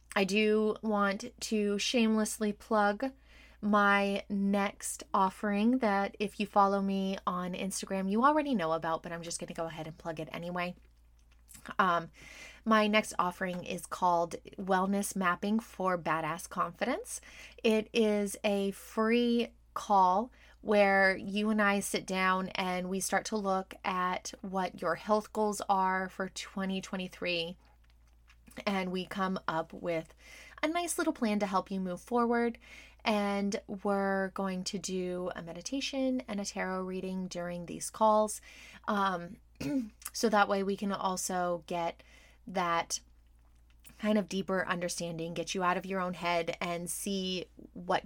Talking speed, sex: 145 wpm, female